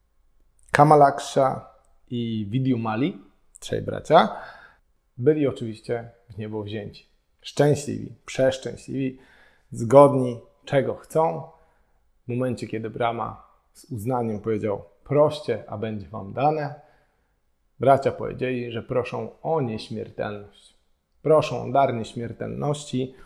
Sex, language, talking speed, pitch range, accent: male, Polish, 95 wpm, 105-135 Hz, native